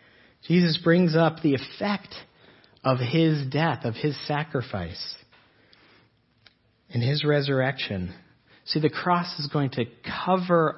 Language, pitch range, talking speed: English, 120-170 Hz, 115 wpm